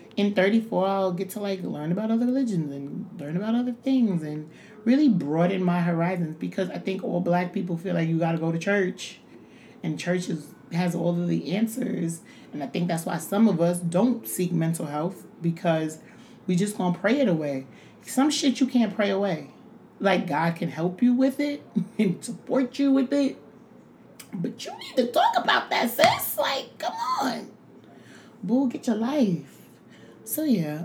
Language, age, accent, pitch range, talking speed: English, 30-49, American, 165-230 Hz, 185 wpm